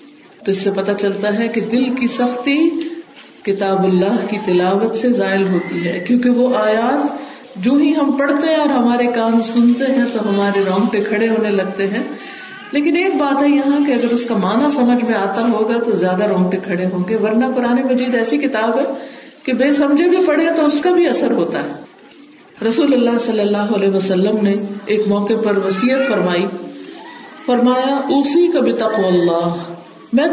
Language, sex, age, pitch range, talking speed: Urdu, female, 50-69, 200-280 Hz, 185 wpm